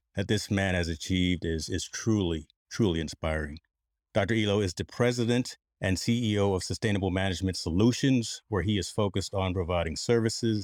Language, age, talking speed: English, 30-49, 160 wpm